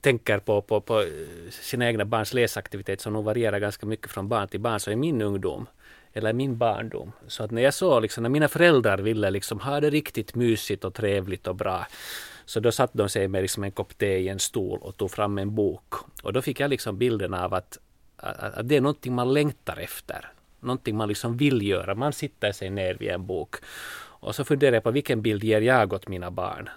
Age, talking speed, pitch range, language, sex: 30-49, 220 wpm, 100-125 Hz, Swedish, male